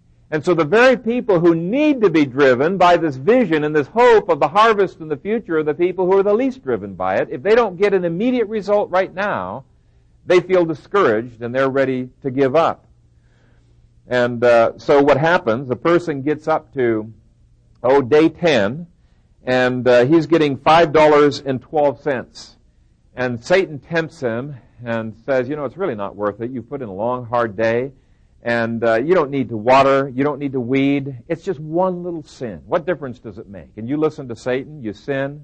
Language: English